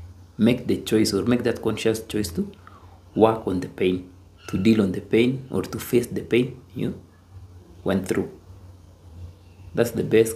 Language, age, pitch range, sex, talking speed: English, 30-49, 90-115 Hz, male, 170 wpm